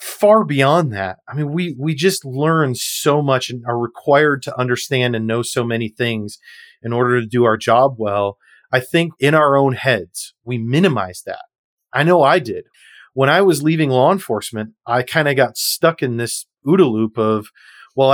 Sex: male